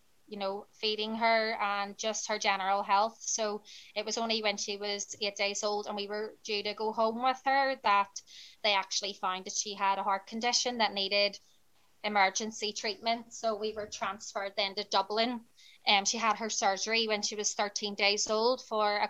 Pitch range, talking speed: 200-225 Hz, 200 wpm